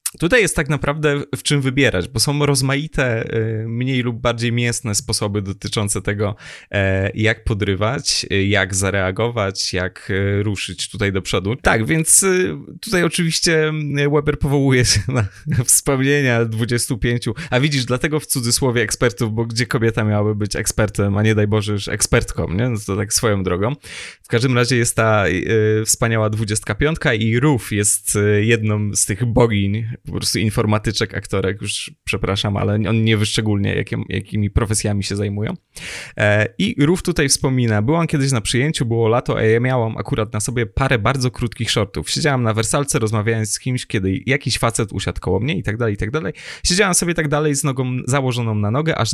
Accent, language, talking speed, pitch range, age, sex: native, Polish, 170 wpm, 105-140 Hz, 20-39, male